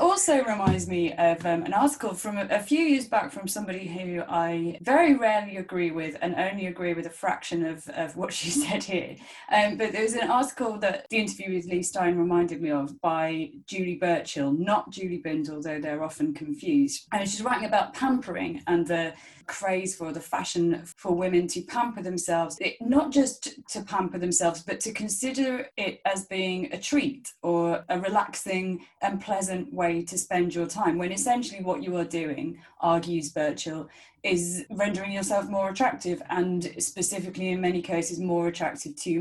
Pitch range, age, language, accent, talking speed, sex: 170-215 Hz, 20-39, English, British, 185 wpm, female